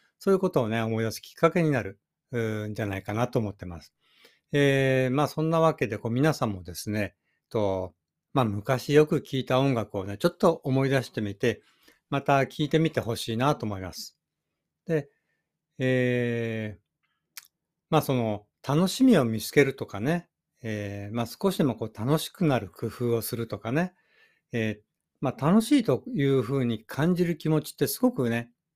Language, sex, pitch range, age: Japanese, male, 110-155 Hz, 60-79